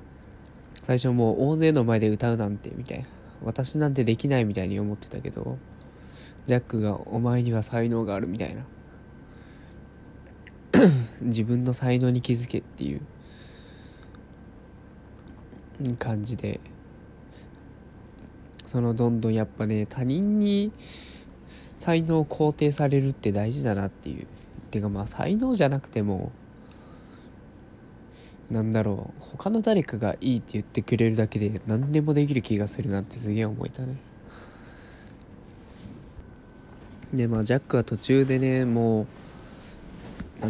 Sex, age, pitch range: male, 20-39, 105-130 Hz